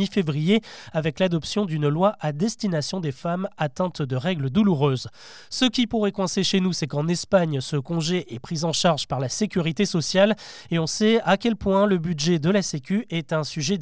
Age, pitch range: 20-39, 160-205 Hz